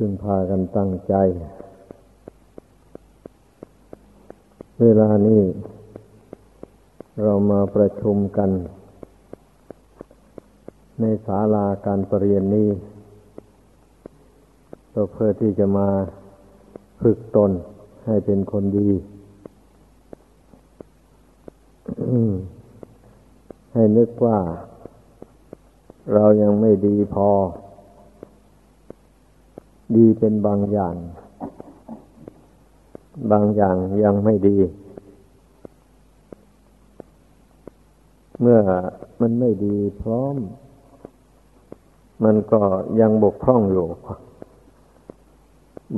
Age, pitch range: 60-79, 100-110 Hz